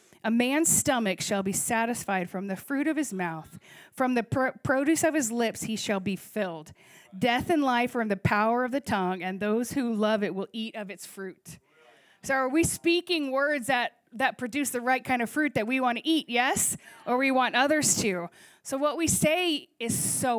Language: English